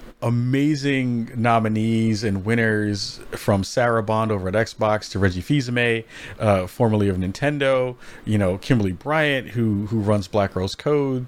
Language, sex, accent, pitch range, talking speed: English, male, American, 100-125 Hz, 145 wpm